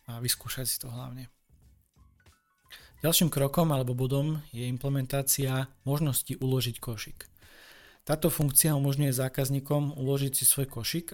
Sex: male